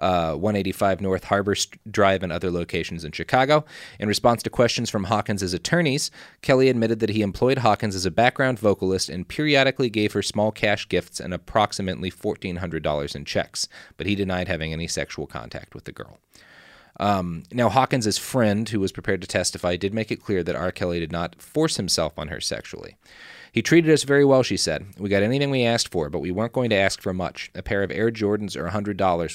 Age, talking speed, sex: 30-49, 205 wpm, male